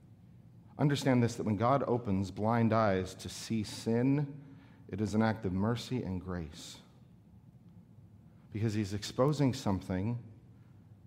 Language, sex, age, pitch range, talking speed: English, male, 40-59, 110-145 Hz, 125 wpm